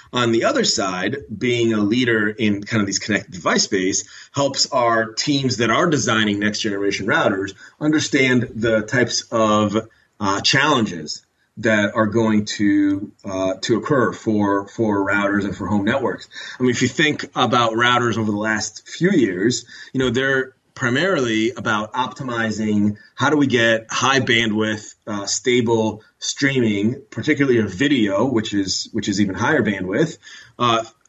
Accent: American